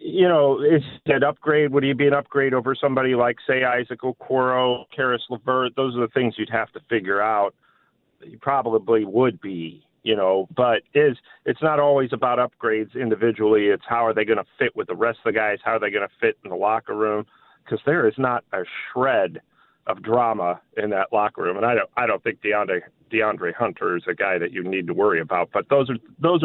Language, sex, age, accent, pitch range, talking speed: English, male, 40-59, American, 110-140 Hz, 220 wpm